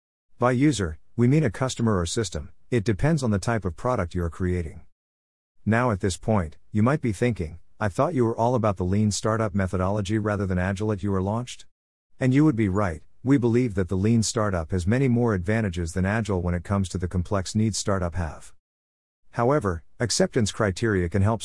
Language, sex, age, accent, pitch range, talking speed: English, male, 50-69, American, 90-115 Hz, 205 wpm